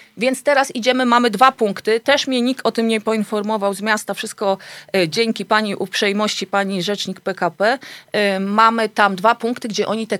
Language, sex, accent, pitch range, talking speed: Polish, female, native, 195-240 Hz, 170 wpm